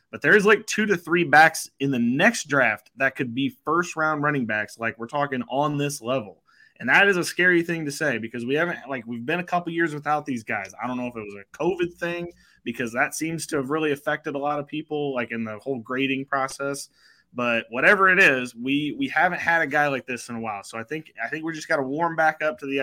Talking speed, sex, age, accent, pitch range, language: 260 wpm, male, 20-39, American, 120-165 Hz, English